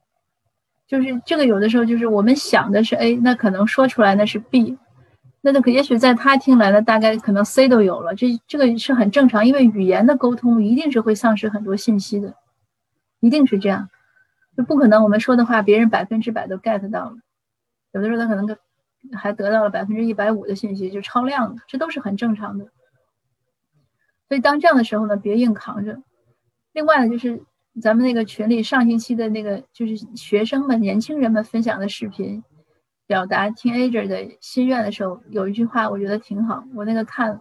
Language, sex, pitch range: Chinese, female, 200-240 Hz